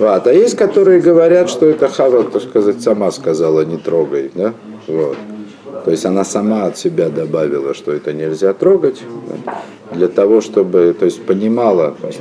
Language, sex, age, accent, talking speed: Russian, male, 50-69, native, 175 wpm